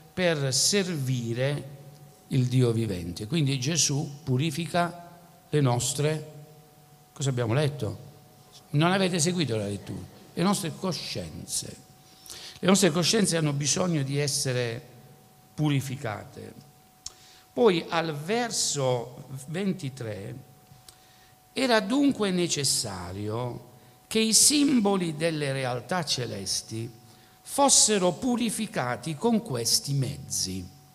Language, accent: Italian, native